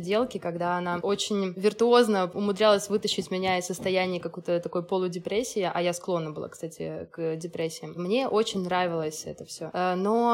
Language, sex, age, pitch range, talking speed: Russian, female, 20-39, 180-220 Hz, 150 wpm